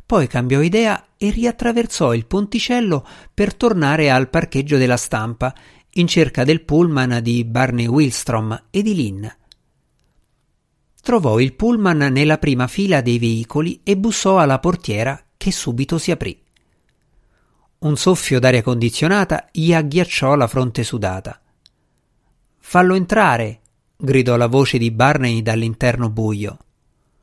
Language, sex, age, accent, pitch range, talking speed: Italian, male, 50-69, native, 120-165 Hz, 125 wpm